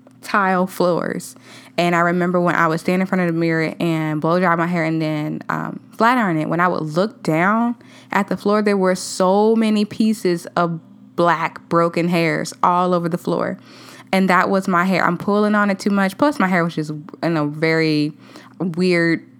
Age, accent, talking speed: 10-29, American, 205 wpm